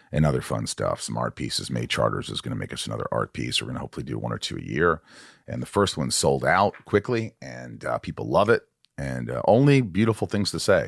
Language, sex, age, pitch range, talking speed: English, male, 40-59, 80-120 Hz, 255 wpm